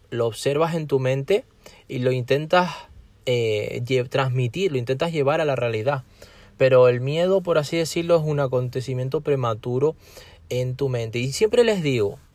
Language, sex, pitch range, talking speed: Spanish, male, 115-145 Hz, 165 wpm